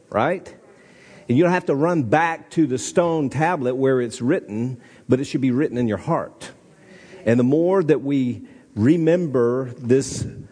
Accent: American